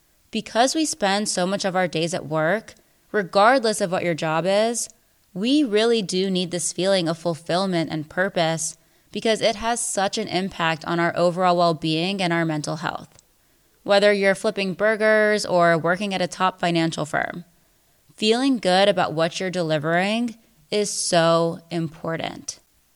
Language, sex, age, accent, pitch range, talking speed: English, female, 20-39, American, 165-200 Hz, 160 wpm